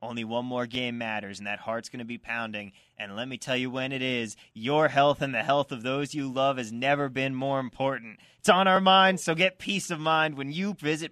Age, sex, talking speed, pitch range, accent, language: 30-49, male, 250 wpm, 125-165 Hz, American, English